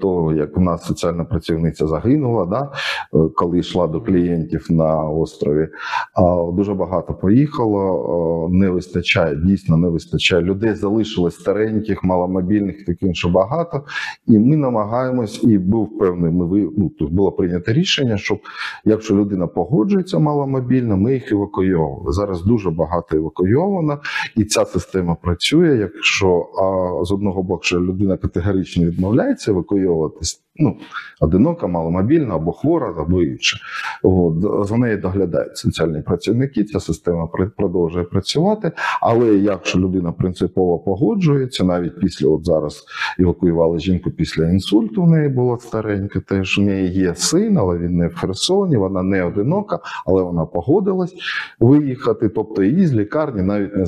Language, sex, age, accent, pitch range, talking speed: Ukrainian, male, 40-59, native, 85-110 Hz, 135 wpm